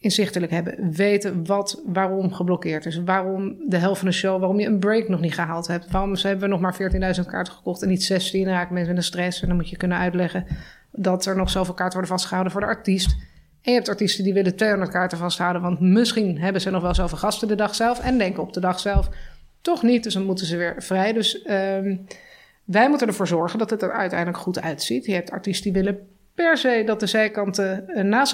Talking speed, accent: 235 wpm, Dutch